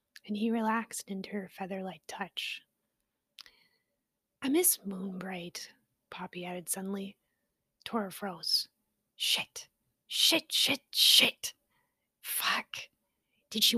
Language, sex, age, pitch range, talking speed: English, female, 30-49, 195-280 Hz, 95 wpm